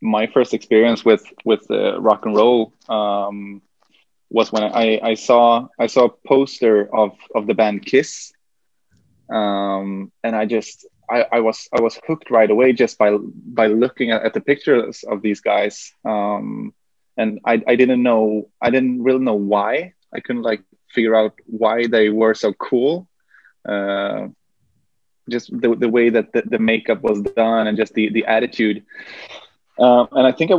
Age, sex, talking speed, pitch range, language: 20-39, male, 175 wpm, 105-120 Hz, English